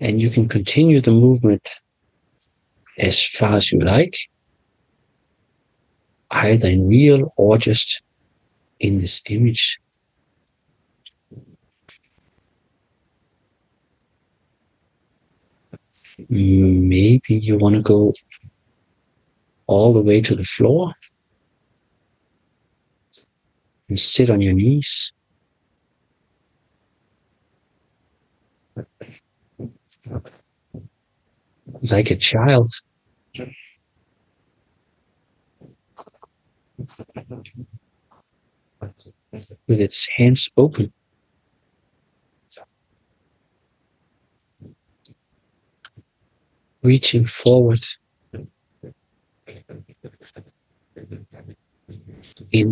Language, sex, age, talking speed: Finnish, male, 50-69, 50 wpm